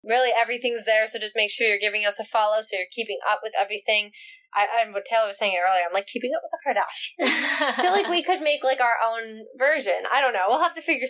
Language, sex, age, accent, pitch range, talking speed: English, female, 10-29, American, 210-280 Hz, 270 wpm